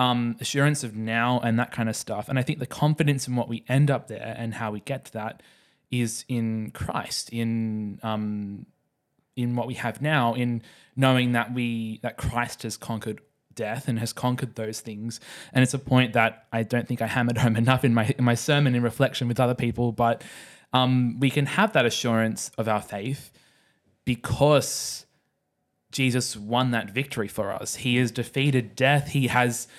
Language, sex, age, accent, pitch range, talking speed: English, male, 20-39, Australian, 115-130 Hz, 190 wpm